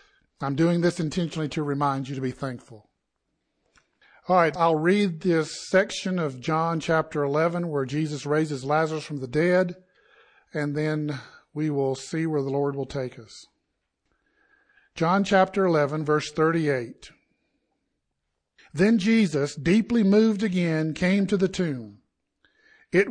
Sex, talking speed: male, 140 wpm